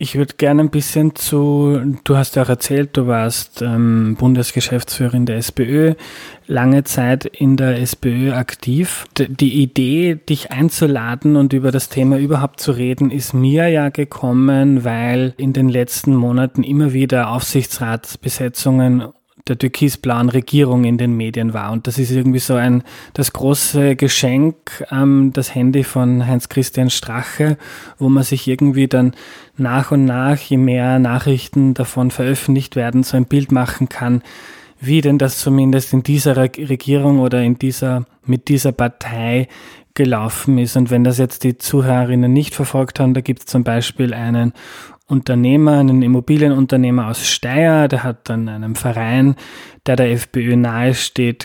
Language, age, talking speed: German, 20-39, 155 wpm